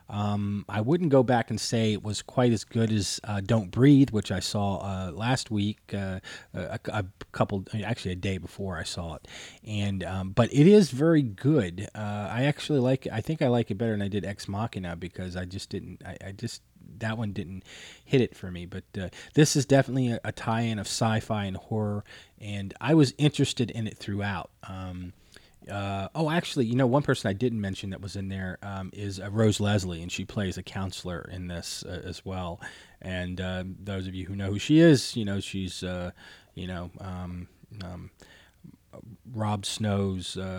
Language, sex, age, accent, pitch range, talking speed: English, male, 30-49, American, 90-110 Hz, 205 wpm